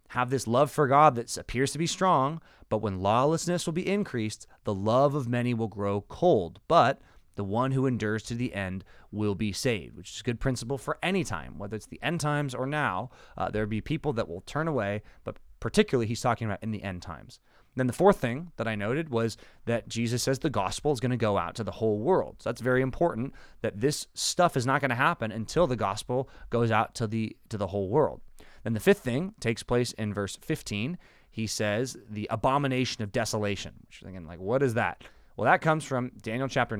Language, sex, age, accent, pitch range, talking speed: English, male, 30-49, American, 105-140 Hz, 220 wpm